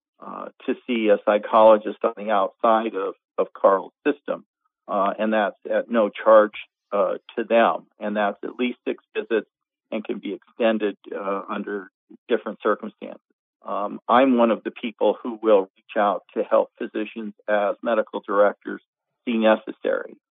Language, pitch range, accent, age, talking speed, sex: English, 105-130 Hz, American, 50-69, 155 wpm, male